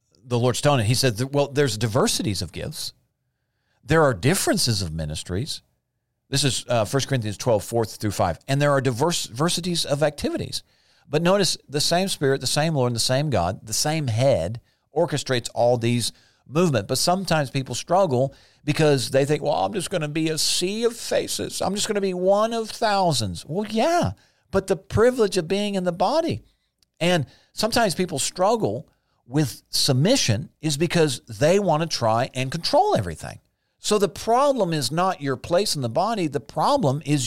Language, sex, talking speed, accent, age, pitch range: English, male, 180 wpm, American, 50-69, 125-175 Hz